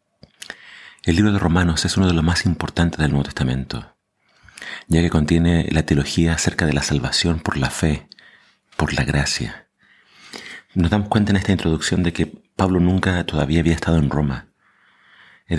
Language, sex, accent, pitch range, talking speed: Spanish, male, Argentinian, 75-90 Hz, 170 wpm